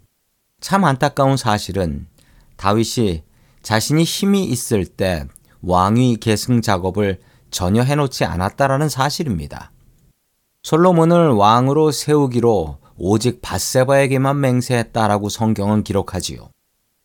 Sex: male